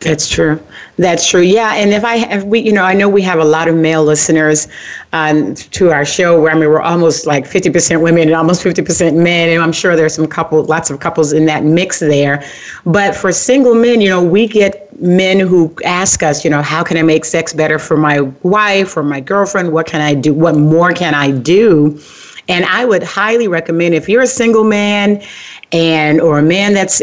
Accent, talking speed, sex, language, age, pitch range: American, 225 wpm, female, English, 40-59, 155-195 Hz